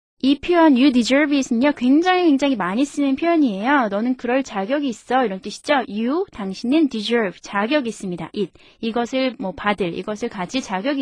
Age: 20-39